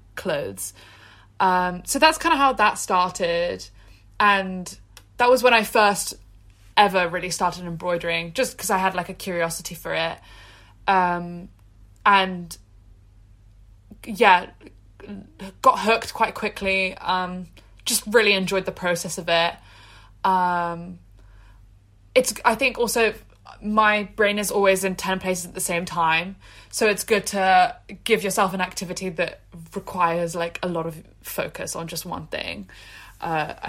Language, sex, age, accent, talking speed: English, female, 20-39, British, 140 wpm